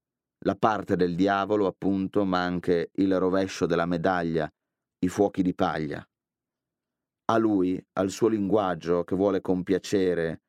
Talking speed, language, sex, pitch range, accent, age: 130 wpm, Italian, male, 90-105 Hz, native, 30-49